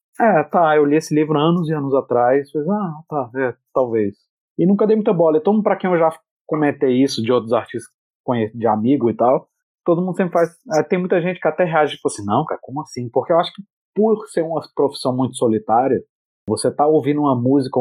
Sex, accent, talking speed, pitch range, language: male, Brazilian, 235 wpm, 125-160 Hz, English